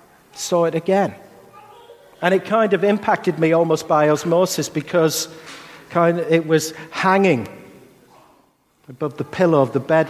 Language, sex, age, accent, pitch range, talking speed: English, male, 50-69, British, 140-195 Hz, 130 wpm